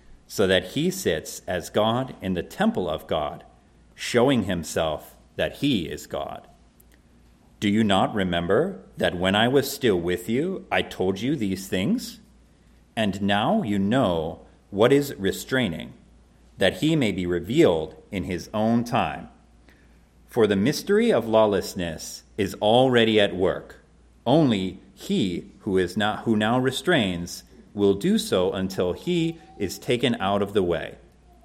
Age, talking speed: 40-59, 145 wpm